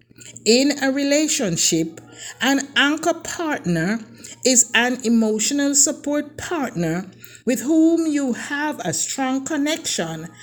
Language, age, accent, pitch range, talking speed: English, 50-69, Nigerian, 185-285 Hz, 105 wpm